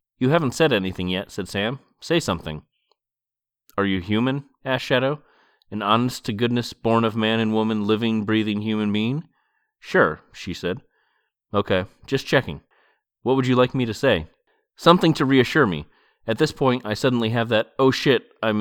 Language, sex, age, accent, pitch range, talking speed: English, male, 30-49, American, 100-130 Hz, 155 wpm